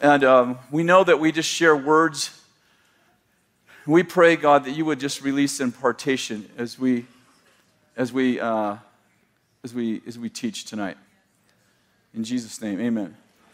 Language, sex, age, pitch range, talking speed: English, male, 40-59, 125-165 Hz, 145 wpm